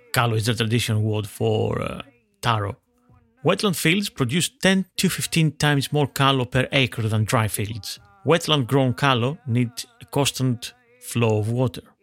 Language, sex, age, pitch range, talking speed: English, male, 30-49, 115-140 Hz, 150 wpm